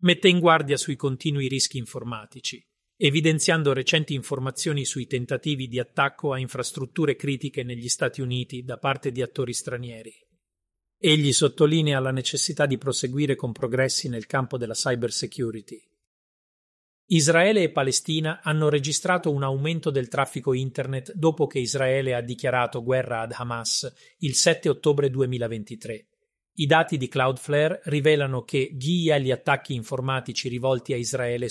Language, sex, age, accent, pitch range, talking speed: Italian, male, 40-59, native, 125-150 Hz, 140 wpm